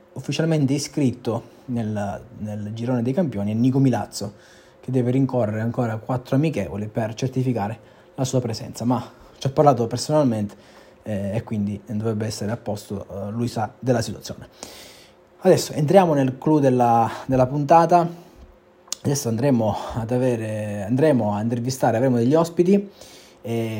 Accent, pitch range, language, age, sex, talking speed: native, 110-145 Hz, Italian, 20-39, male, 140 wpm